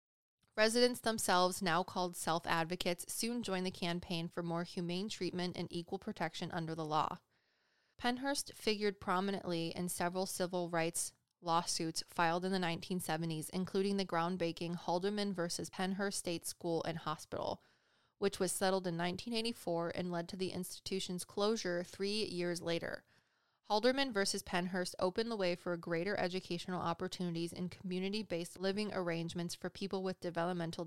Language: English